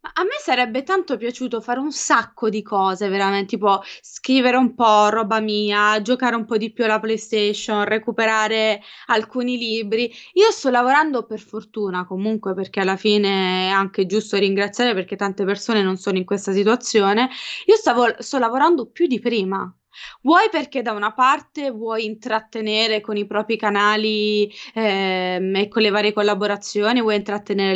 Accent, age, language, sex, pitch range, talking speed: native, 20-39, Italian, female, 200-245 Hz, 160 wpm